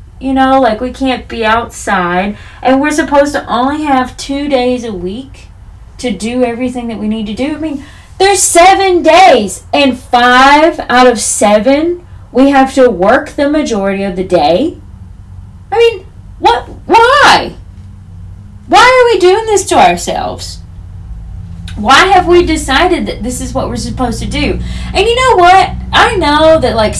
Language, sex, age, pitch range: English, female, 20-39, 215-295 Hz